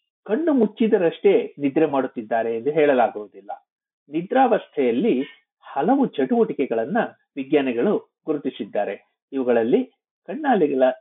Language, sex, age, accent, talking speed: Kannada, male, 60-79, native, 70 wpm